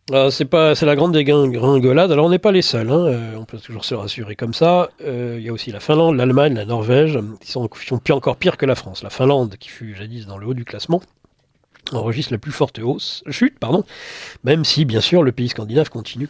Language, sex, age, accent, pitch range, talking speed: French, male, 40-59, French, 110-150 Hz, 235 wpm